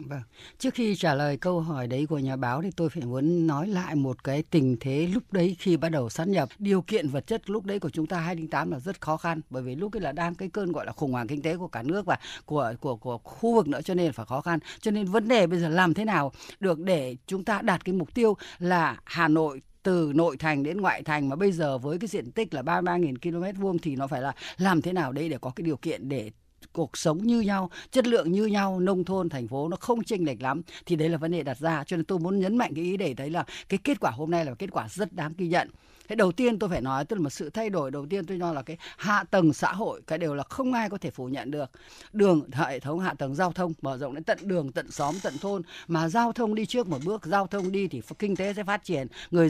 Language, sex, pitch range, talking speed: Vietnamese, female, 150-195 Hz, 280 wpm